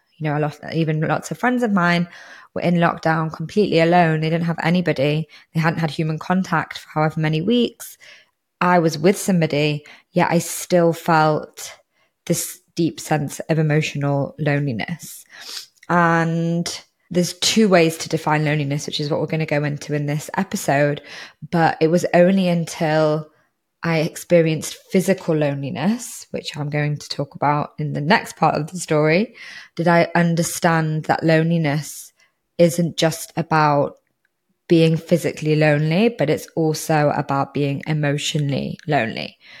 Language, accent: English, British